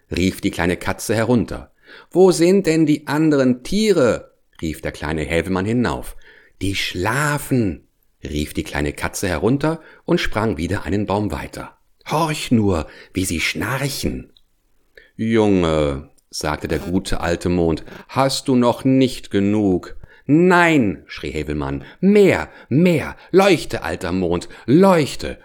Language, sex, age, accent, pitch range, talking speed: English, male, 50-69, German, 85-130 Hz, 125 wpm